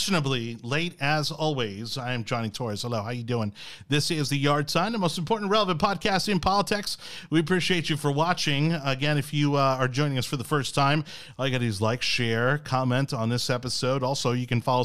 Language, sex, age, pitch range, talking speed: English, male, 30-49, 115-155 Hz, 215 wpm